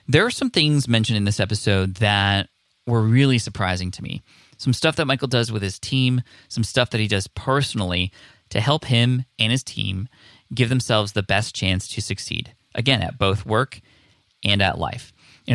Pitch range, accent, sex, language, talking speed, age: 100-120 Hz, American, male, English, 190 wpm, 20-39